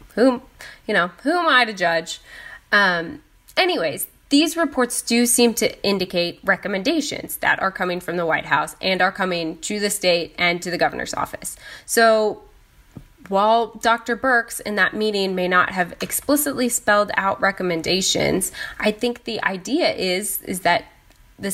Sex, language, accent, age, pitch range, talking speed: female, English, American, 20-39, 170-215 Hz, 160 wpm